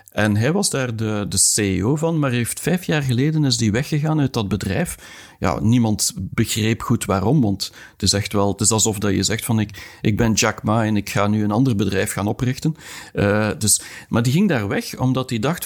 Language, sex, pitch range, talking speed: Dutch, male, 105-135 Hz, 230 wpm